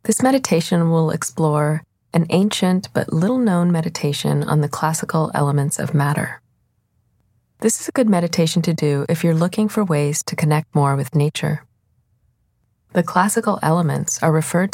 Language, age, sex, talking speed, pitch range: English, 30-49, female, 150 wpm, 130-165 Hz